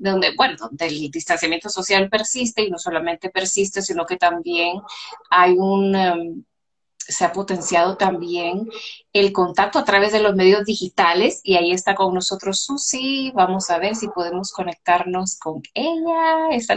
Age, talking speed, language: 30-49, 155 wpm, Spanish